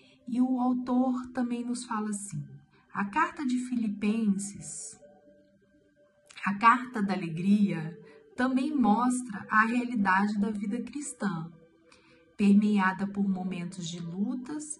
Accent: Brazilian